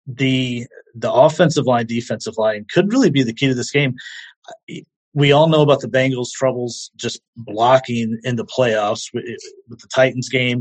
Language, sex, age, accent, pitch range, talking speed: English, male, 30-49, American, 115-145 Hz, 170 wpm